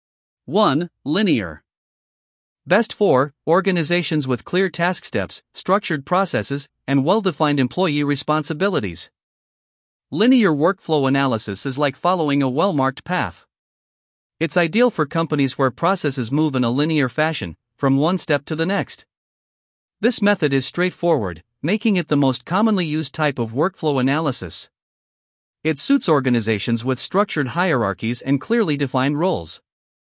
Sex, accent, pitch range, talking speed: male, American, 130-175 Hz, 135 wpm